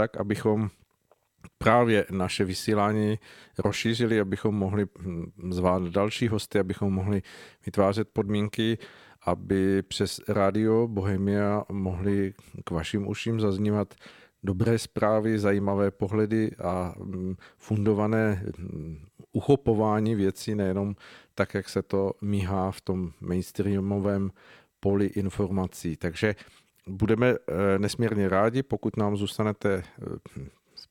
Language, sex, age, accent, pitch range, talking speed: Czech, male, 50-69, native, 95-105 Hz, 100 wpm